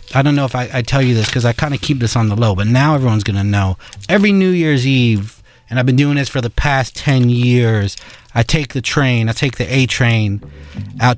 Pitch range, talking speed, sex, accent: 115-145 Hz, 260 wpm, male, American